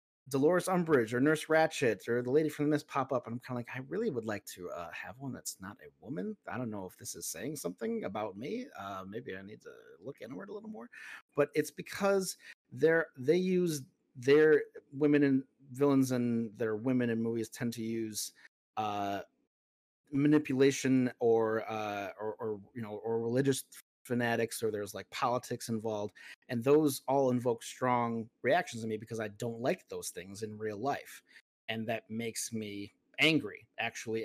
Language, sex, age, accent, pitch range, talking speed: English, male, 30-49, American, 115-155 Hz, 185 wpm